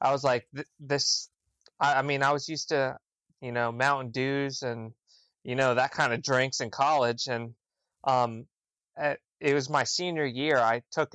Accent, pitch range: American, 120-135 Hz